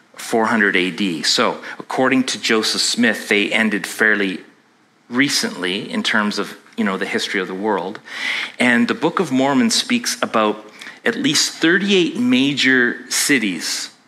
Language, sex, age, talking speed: English, male, 30-49, 140 wpm